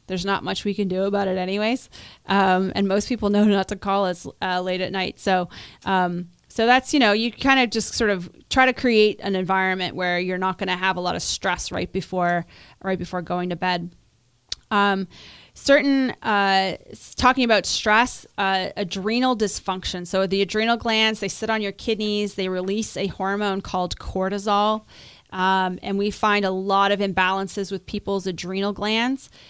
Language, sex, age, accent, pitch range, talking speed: English, female, 30-49, American, 185-215 Hz, 185 wpm